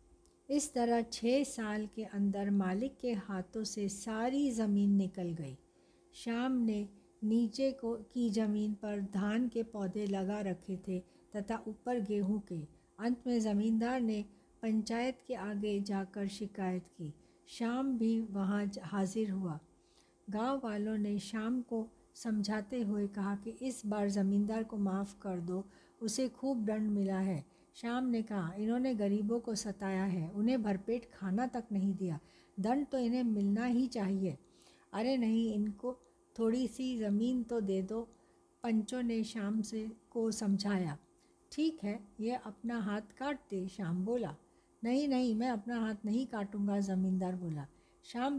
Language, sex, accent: Hindi, female, native